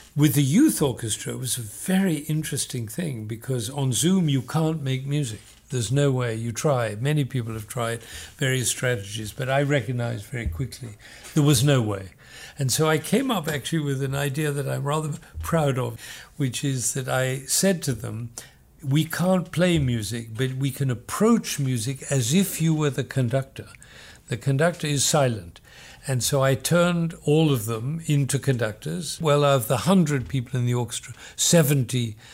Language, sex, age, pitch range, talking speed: English, male, 60-79, 120-150 Hz, 180 wpm